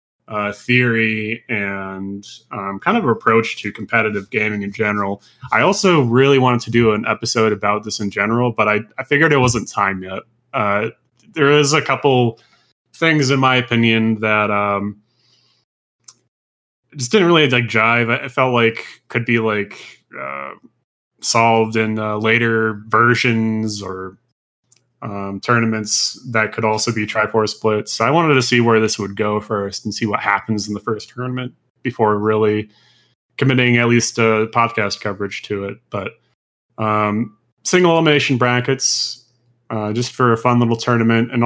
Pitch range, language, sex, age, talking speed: 105-125 Hz, English, male, 20-39, 160 wpm